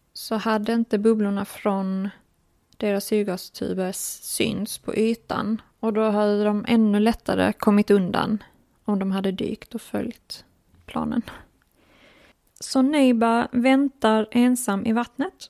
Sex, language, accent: female, Swedish, native